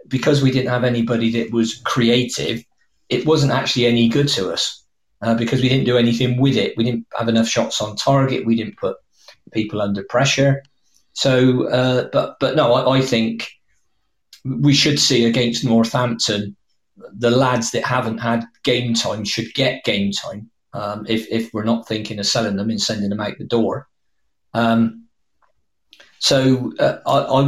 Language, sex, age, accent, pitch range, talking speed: English, male, 40-59, British, 115-125 Hz, 175 wpm